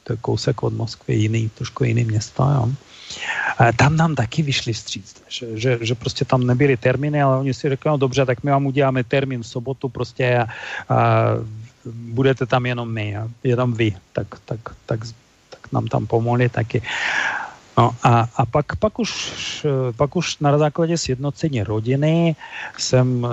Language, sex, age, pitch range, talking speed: Czech, male, 40-59, 120-140 Hz, 175 wpm